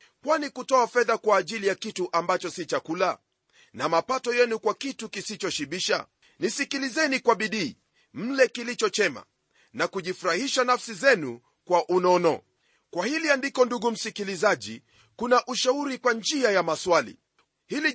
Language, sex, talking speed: Swahili, male, 135 wpm